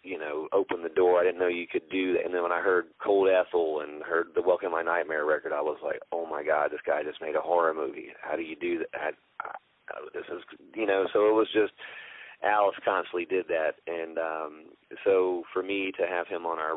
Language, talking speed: English, 235 wpm